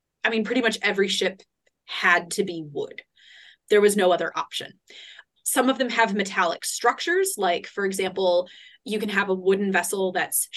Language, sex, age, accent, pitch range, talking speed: English, female, 20-39, American, 185-230 Hz, 175 wpm